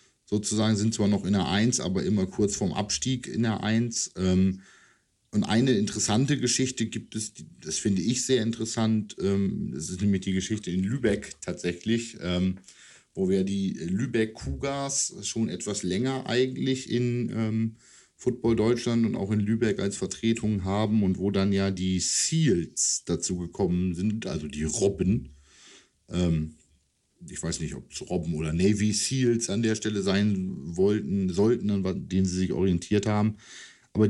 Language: German